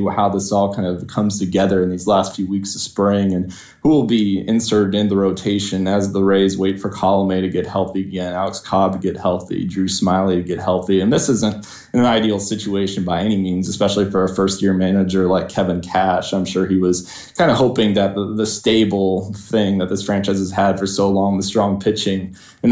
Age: 20-39